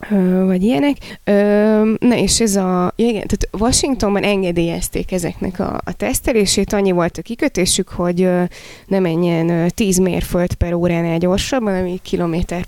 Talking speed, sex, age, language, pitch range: 135 wpm, female, 20-39, Hungarian, 175-195 Hz